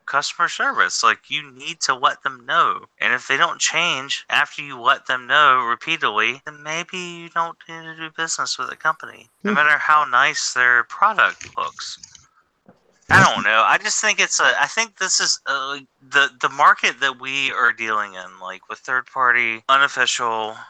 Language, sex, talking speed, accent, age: English, male, 180 wpm, American, 30-49